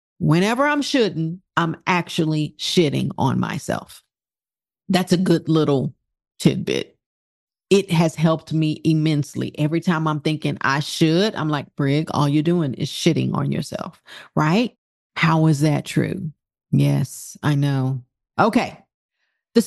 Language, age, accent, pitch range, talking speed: English, 40-59, American, 165-265 Hz, 135 wpm